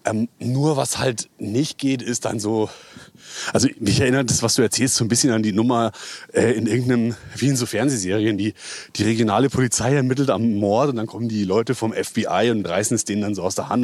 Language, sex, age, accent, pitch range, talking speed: German, male, 30-49, German, 105-125 Hz, 225 wpm